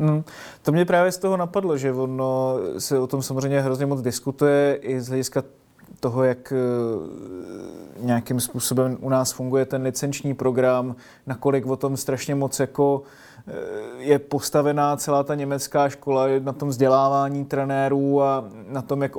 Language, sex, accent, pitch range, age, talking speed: Czech, male, native, 130-145 Hz, 30-49, 150 wpm